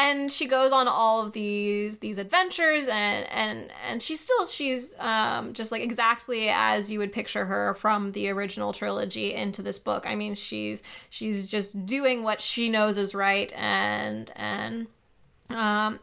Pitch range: 210-245 Hz